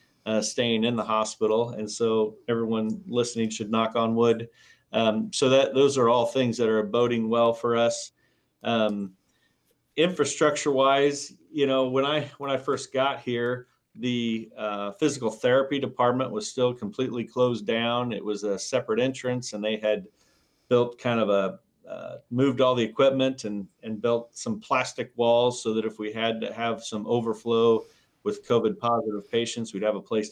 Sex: male